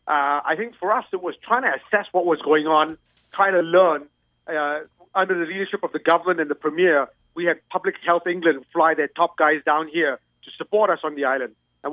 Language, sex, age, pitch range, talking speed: English, male, 40-59, 155-205 Hz, 225 wpm